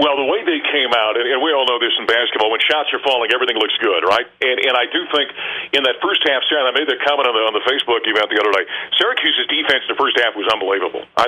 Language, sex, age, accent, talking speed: English, male, 50-69, American, 275 wpm